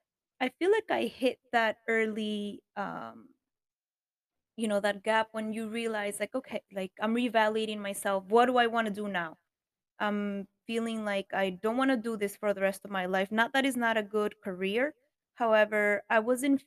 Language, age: English, 20-39